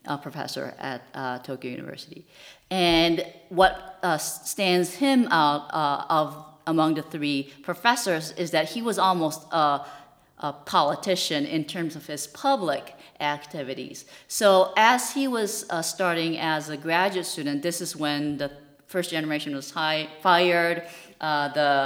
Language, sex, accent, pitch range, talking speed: English, female, American, 145-180 Hz, 145 wpm